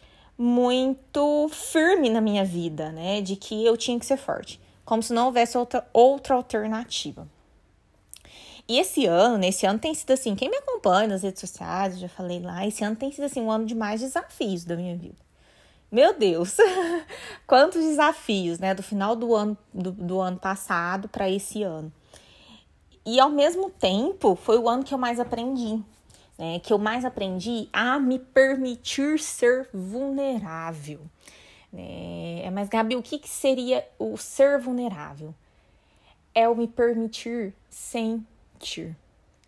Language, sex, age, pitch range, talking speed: Portuguese, female, 20-39, 180-250 Hz, 155 wpm